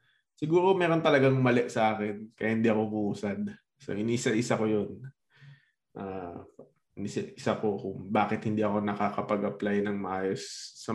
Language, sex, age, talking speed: Filipino, male, 20-39, 135 wpm